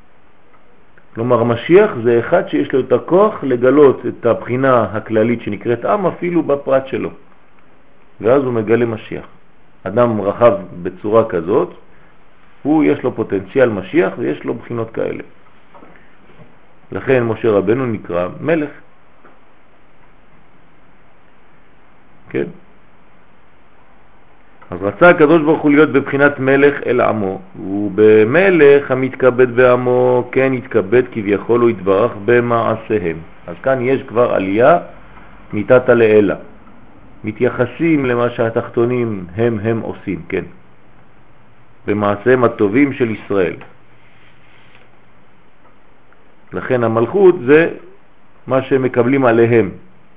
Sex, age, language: male, 50-69, French